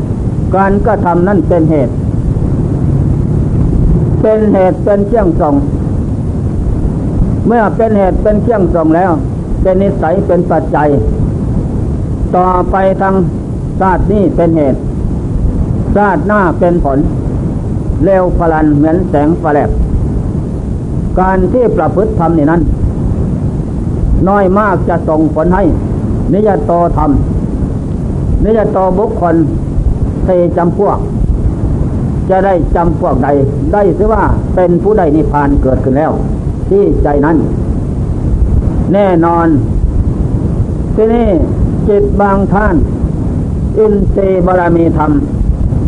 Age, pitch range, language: 60-79, 150-195 Hz, Thai